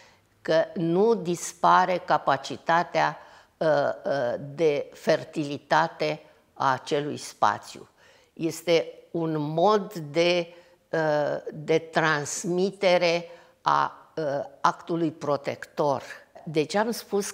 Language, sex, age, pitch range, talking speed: Romanian, female, 50-69, 155-190 Hz, 75 wpm